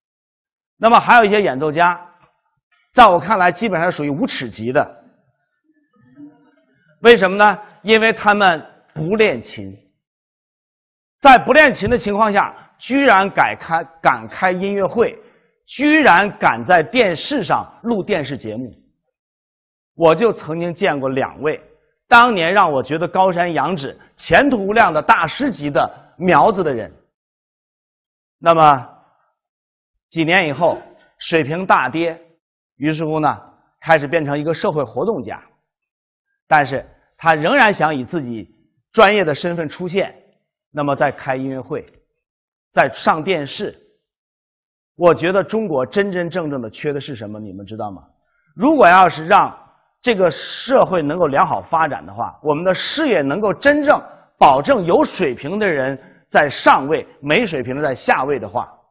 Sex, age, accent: male, 50-69, native